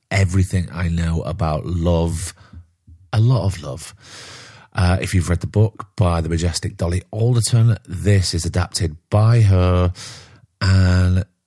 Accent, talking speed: British, 135 wpm